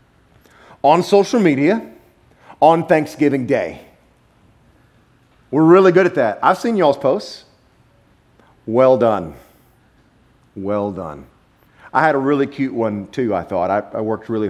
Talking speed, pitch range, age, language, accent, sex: 130 wpm, 110-165 Hz, 40-59, English, American, male